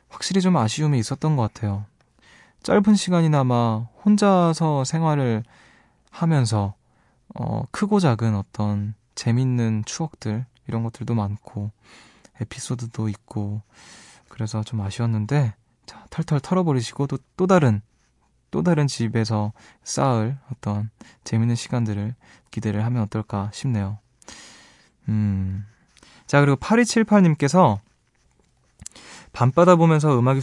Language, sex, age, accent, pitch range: Korean, male, 20-39, native, 110-140 Hz